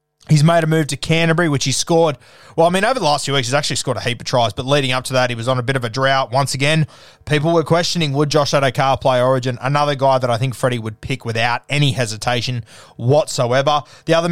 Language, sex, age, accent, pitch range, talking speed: English, male, 20-39, Australian, 120-150 Hz, 255 wpm